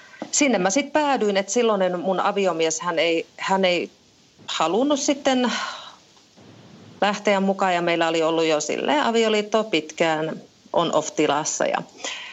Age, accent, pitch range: 40-59, native, 170-230 Hz